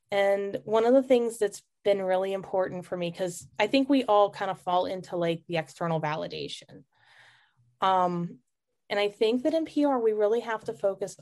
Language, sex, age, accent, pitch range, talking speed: English, female, 20-39, American, 170-210 Hz, 195 wpm